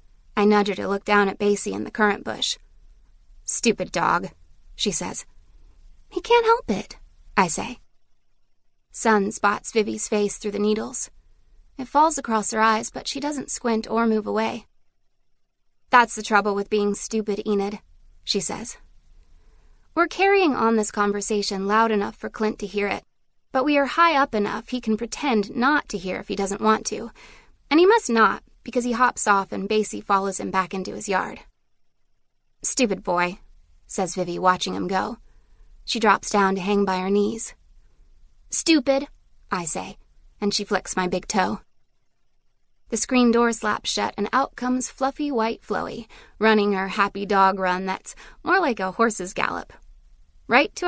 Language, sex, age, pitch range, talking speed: English, female, 20-39, 195-245 Hz, 170 wpm